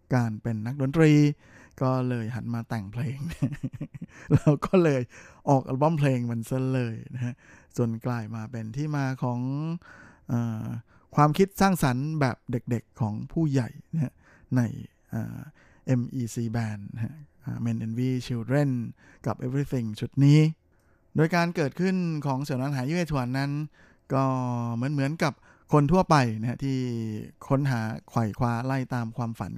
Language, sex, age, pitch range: Thai, male, 20-39, 115-140 Hz